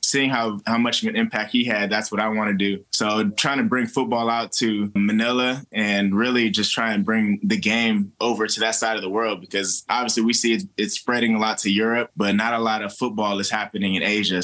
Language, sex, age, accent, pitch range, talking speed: English, male, 20-39, American, 100-115 Hz, 245 wpm